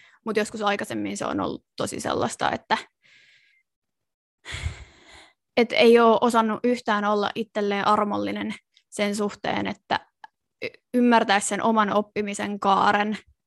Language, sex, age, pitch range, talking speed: Finnish, female, 20-39, 205-235 Hz, 110 wpm